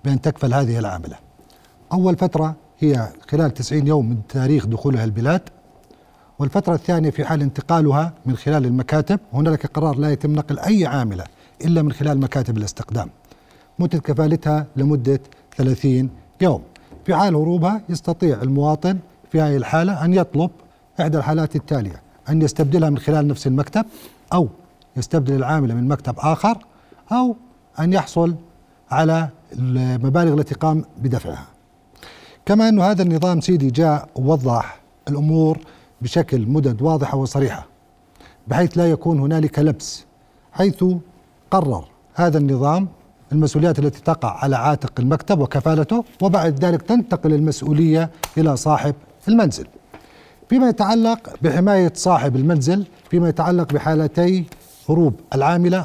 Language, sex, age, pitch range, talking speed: Arabic, male, 40-59, 140-175 Hz, 125 wpm